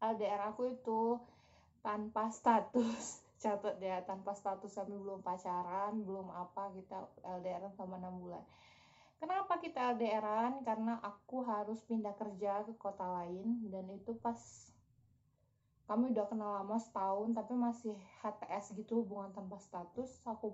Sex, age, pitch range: female, 20-39, 195-230 Hz